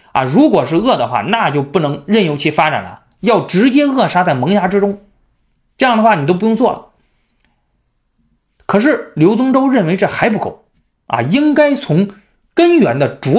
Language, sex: Chinese, male